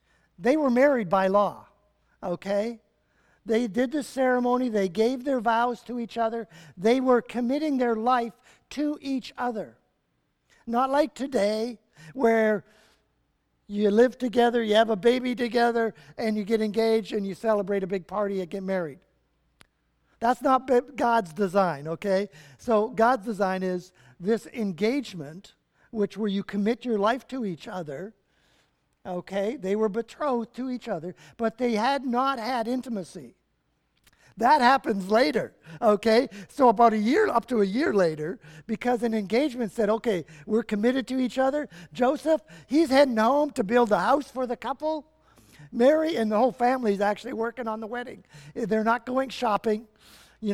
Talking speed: 160 wpm